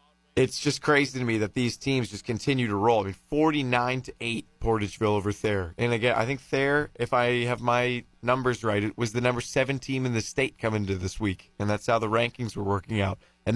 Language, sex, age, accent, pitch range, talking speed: English, male, 30-49, American, 105-130 Hz, 225 wpm